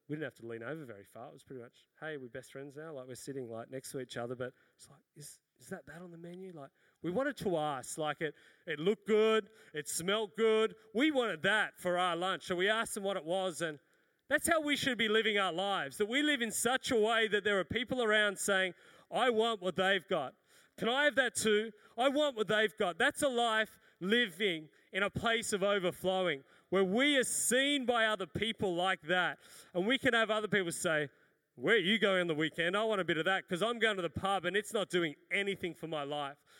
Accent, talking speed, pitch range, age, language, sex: Australian, 245 wpm, 160-220 Hz, 30-49, English, male